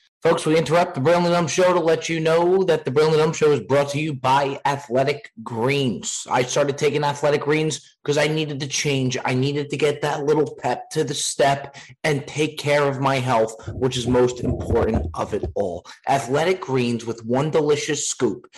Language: English